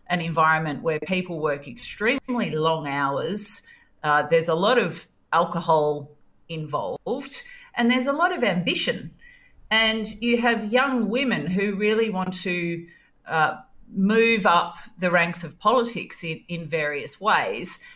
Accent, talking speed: Australian, 135 wpm